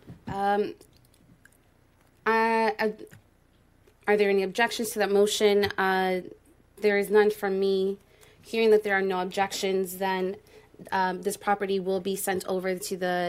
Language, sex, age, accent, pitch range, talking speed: English, female, 20-39, American, 190-215 Hz, 135 wpm